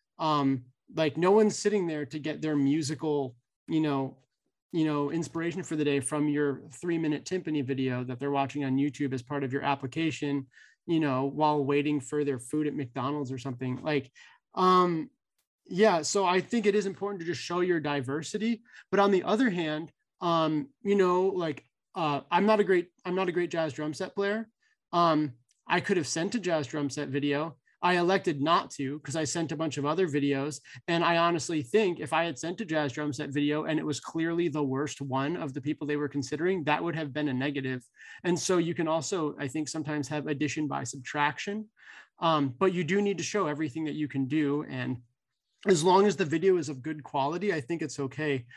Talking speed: 215 wpm